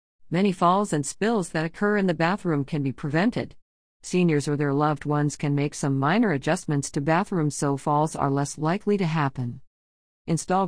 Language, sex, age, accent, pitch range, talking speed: English, female, 50-69, American, 140-185 Hz, 180 wpm